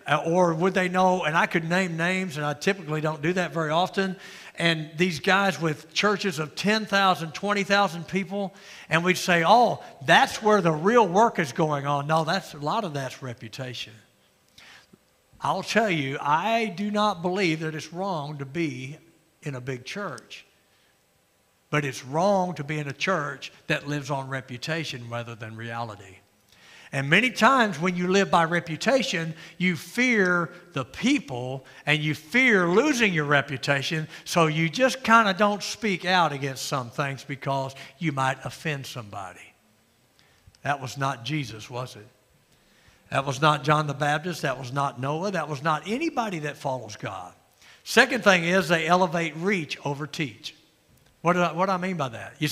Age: 60-79